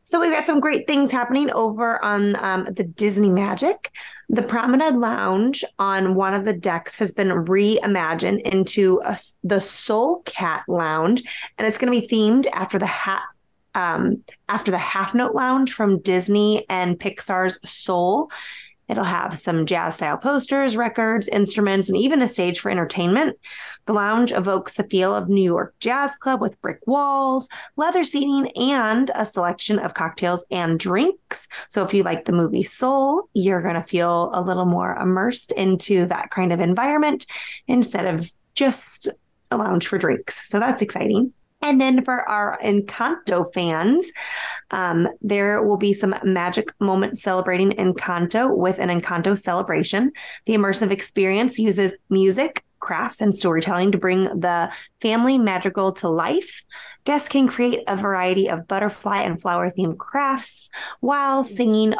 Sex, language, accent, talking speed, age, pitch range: female, English, American, 155 wpm, 20-39, 185-250 Hz